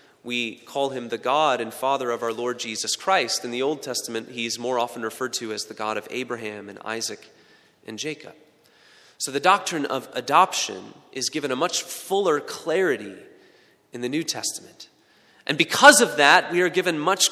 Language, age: English, 30-49